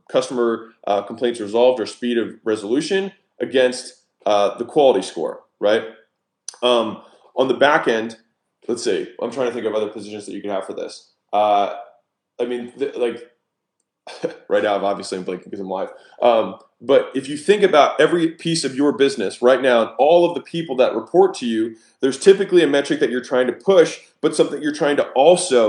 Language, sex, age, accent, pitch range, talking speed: English, male, 20-39, American, 120-165 Hz, 195 wpm